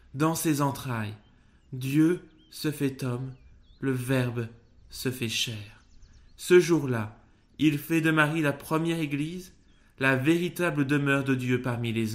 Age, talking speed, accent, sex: 20-39, 140 wpm, French, male